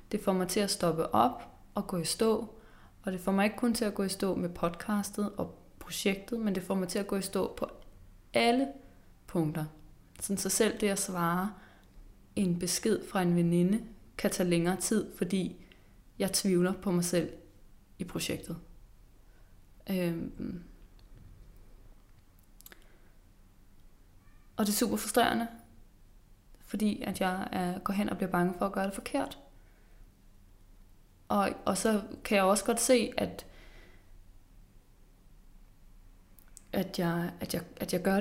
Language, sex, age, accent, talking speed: English, female, 20-39, Danish, 145 wpm